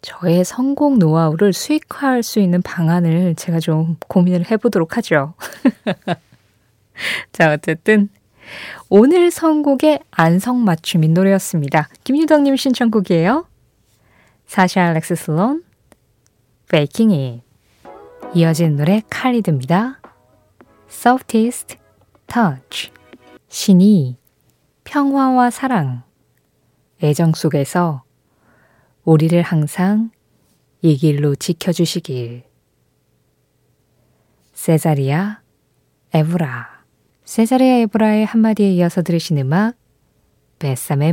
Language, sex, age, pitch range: Korean, female, 20-39, 160-230 Hz